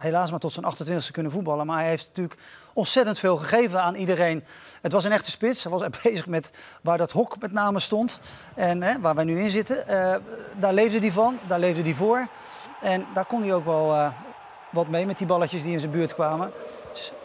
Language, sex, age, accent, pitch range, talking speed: Dutch, male, 40-59, Dutch, 160-190 Hz, 230 wpm